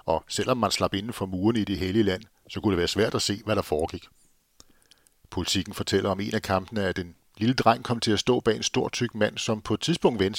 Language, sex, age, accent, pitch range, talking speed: Danish, male, 60-79, native, 95-120 Hz, 260 wpm